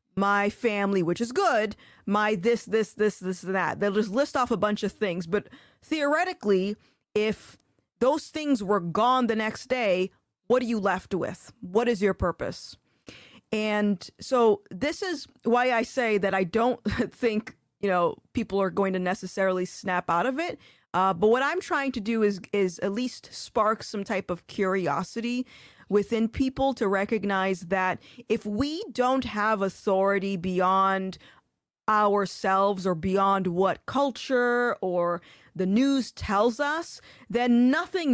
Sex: female